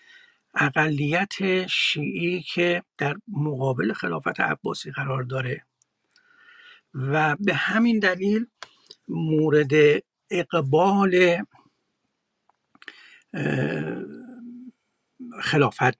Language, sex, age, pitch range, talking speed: Persian, male, 60-79, 135-185 Hz, 60 wpm